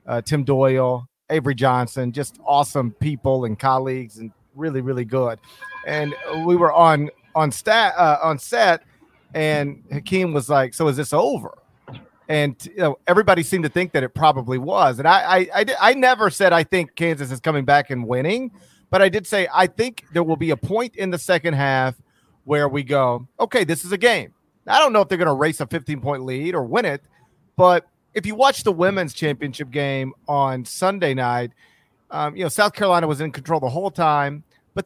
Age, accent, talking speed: 40-59, American, 205 wpm